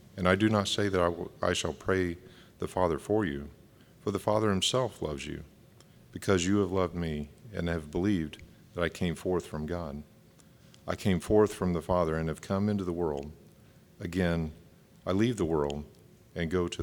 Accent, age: American, 50-69